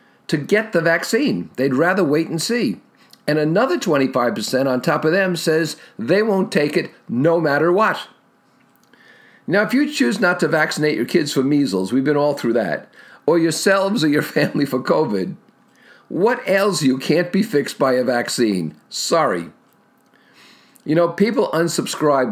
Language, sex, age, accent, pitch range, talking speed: English, male, 50-69, American, 130-175 Hz, 165 wpm